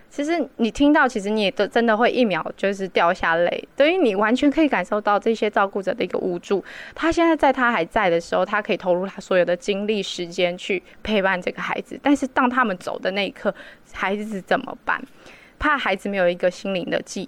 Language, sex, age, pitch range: Chinese, female, 20-39, 190-255 Hz